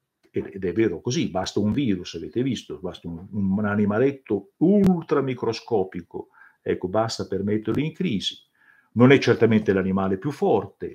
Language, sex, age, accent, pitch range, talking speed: Italian, male, 50-69, native, 105-155 Hz, 145 wpm